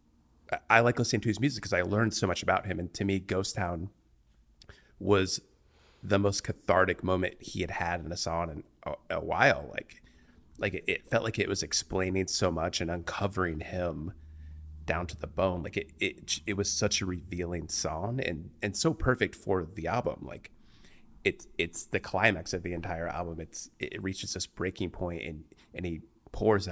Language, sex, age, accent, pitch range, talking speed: English, male, 30-49, American, 85-105 Hz, 195 wpm